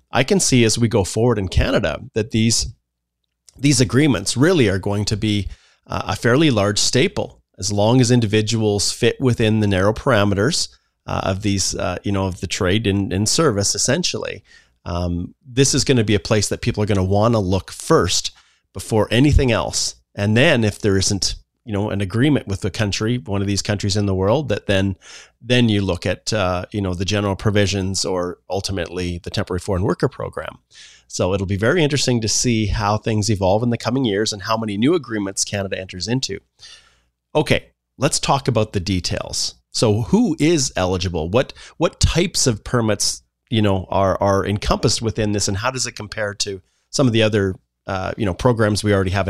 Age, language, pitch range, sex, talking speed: 30-49, English, 95-115 Hz, male, 195 wpm